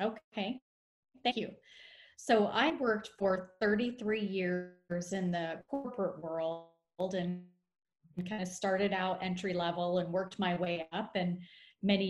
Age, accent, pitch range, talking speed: 30-49, American, 175-215 Hz, 135 wpm